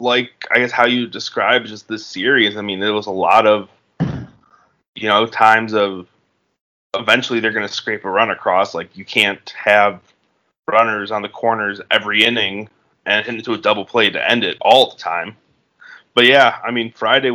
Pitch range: 95-110 Hz